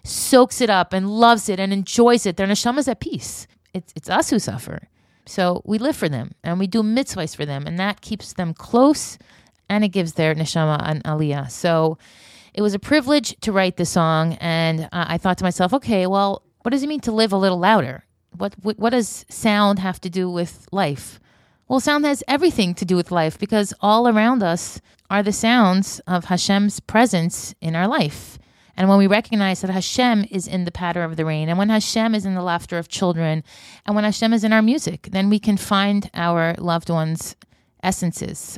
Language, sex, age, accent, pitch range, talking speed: English, female, 30-49, American, 165-210 Hz, 210 wpm